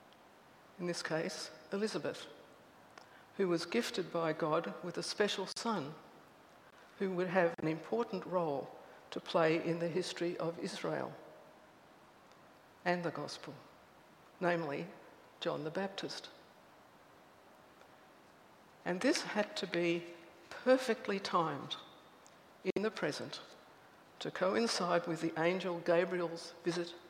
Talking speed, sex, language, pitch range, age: 110 wpm, female, English, 165-195 Hz, 60-79